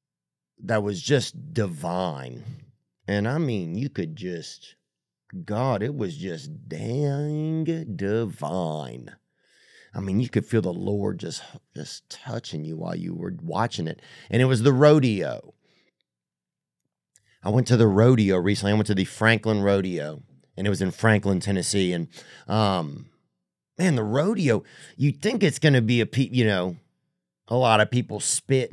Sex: male